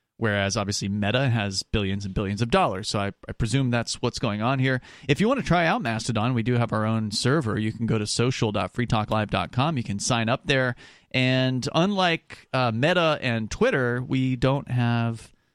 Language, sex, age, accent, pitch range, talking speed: English, male, 30-49, American, 110-135 Hz, 195 wpm